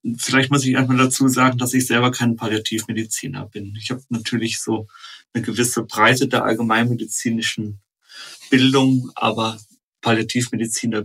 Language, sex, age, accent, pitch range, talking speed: German, male, 40-59, German, 110-125 Hz, 130 wpm